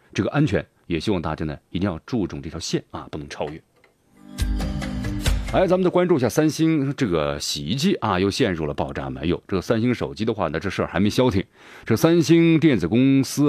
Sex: male